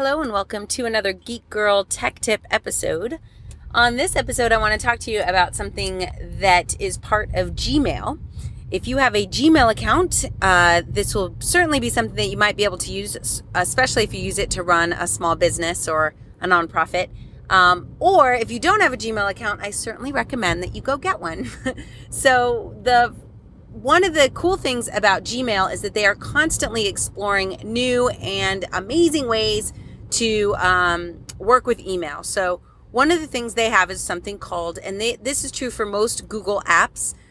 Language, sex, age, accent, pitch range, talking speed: English, female, 30-49, American, 185-255 Hz, 190 wpm